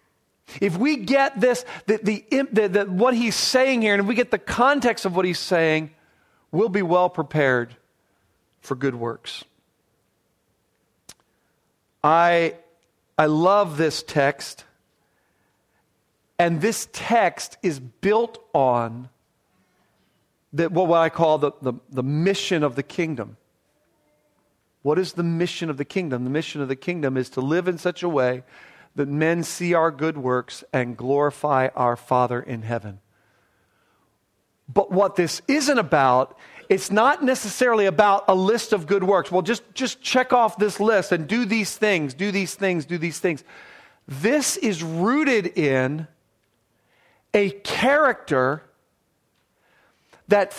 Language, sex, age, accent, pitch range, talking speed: English, male, 40-59, American, 145-220 Hz, 135 wpm